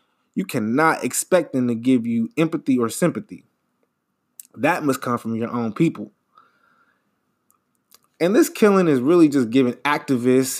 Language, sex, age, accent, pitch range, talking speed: English, male, 20-39, American, 125-180 Hz, 140 wpm